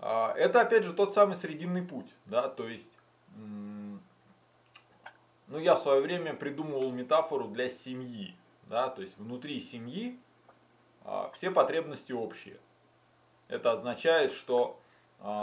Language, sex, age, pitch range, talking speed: Russian, male, 20-39, 125-195 Hz, 115 wpm